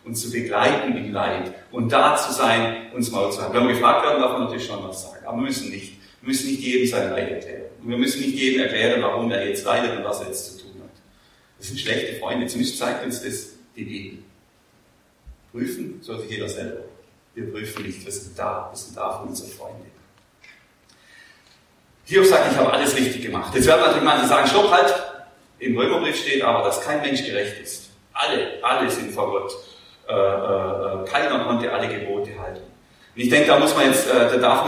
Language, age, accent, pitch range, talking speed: German, 40-59, German, 105-135 Hz, 210 wpm